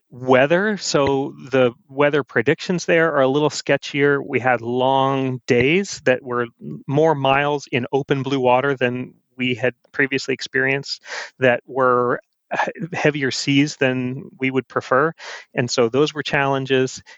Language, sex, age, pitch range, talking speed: English, male, 30-49, 125-145 Hz, 140 wpm